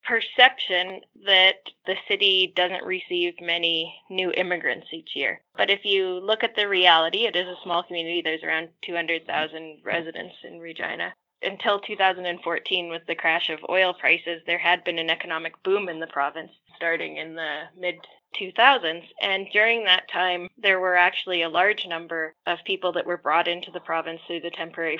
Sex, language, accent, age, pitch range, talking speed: female, English, American, 10-29, 165-190 Hz, 170 wpm